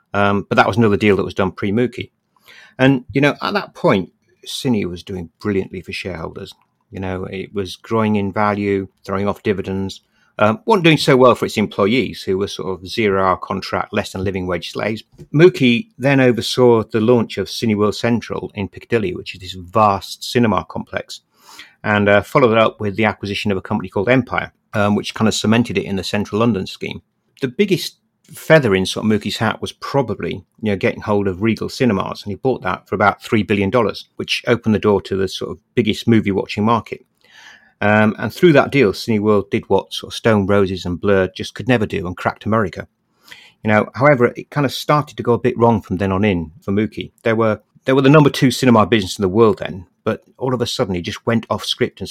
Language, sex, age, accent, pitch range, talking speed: English, male, 50-69, British, 100-120 Hz, 220 wpm